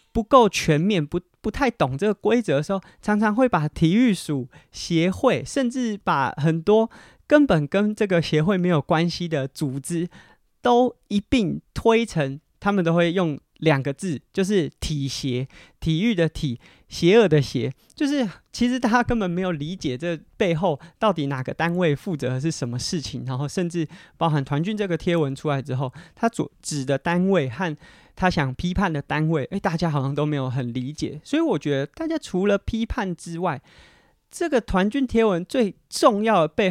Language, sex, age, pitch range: Chinese, male, 30-49, 150-210 Hz